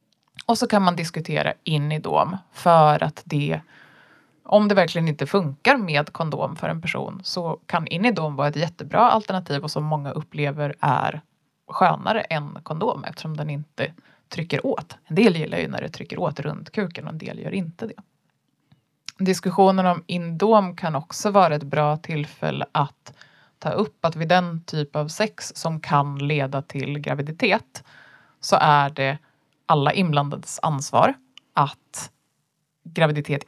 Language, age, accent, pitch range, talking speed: Swedish, 20-39, native, 150-185 Hz, 160 wpm